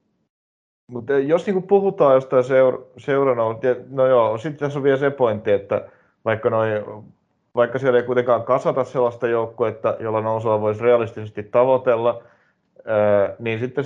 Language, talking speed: Finnish, 145 wpm